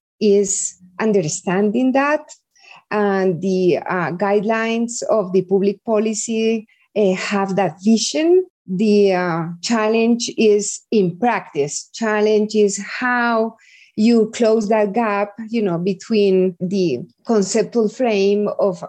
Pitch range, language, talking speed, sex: 195-215 Hz, English, 110 wpm, female